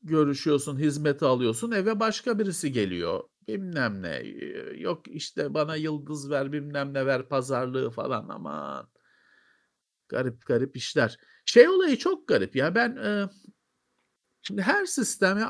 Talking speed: 130 wpm